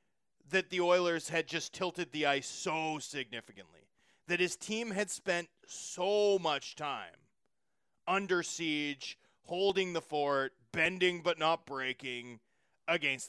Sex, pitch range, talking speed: male, 150-205 Hz, 125 wpm